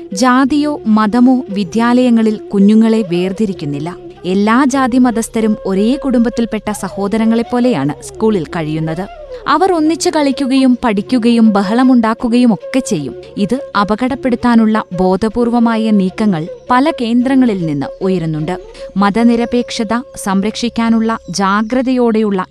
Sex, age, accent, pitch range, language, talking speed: female, 20-39, native, 200-260 Hz, Malayalam, 80 wpm